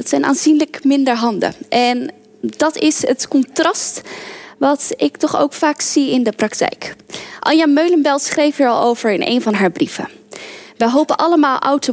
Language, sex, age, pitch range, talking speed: Dutch, female, 10-29, 235-295 Hz, 175 wpm